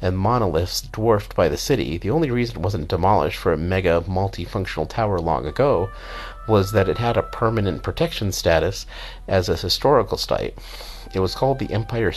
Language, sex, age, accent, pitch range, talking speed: English, male, 50-69, American, 90-115 Hz, 180 wpm